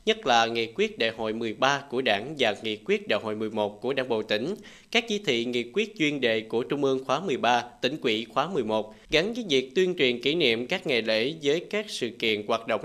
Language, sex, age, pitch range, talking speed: Vietnamese, male, 20-39, 120-160 Hz, 240 wpm